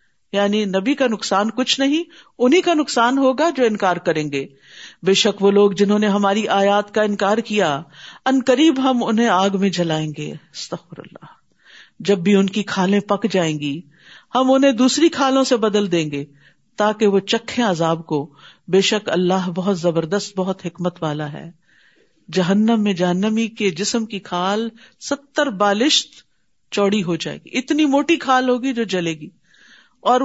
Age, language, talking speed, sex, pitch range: 50-69, Urdu, 165 wpm, female, 195-255 Hz